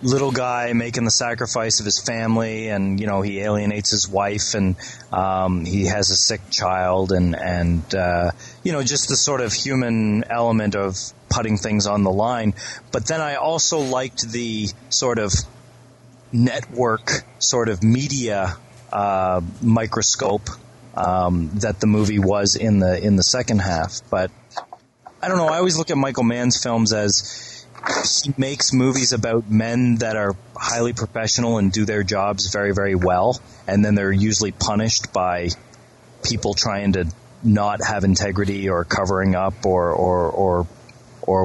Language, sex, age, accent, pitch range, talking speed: English, male, 30-49, American, 95-120 Hz, 160 wpm